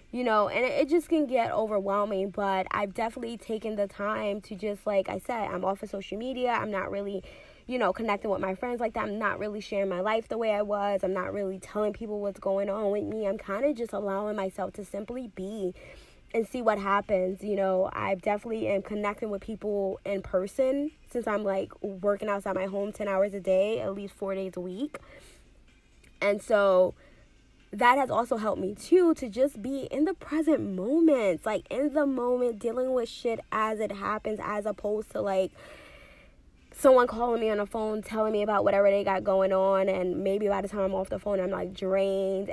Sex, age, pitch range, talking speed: female, 10-29, 195-225 Hz, 210 wpm